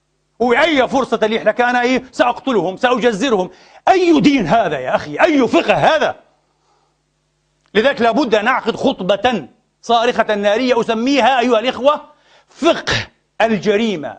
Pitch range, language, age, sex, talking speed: 210-275 Hz, Arabic, 40-59, male, 120 wpm